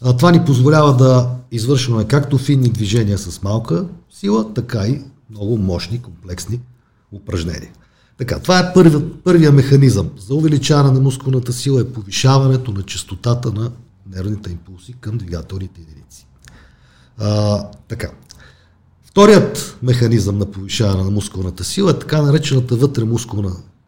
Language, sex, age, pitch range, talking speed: Bulgarian, male, 50-69, 100-140 Hz, 125 wpm